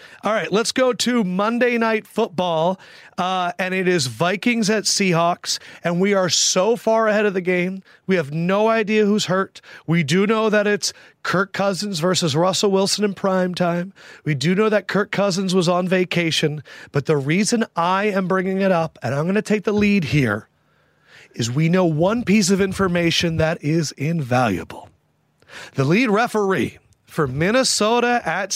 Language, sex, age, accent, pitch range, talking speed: English, male, 30-49, American, 170-210 Hz, 175 wpm